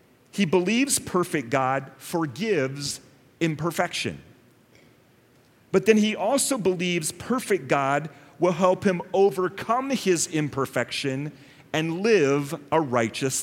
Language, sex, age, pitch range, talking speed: English, male, 40-59, 140-210 Hz, 105 wpm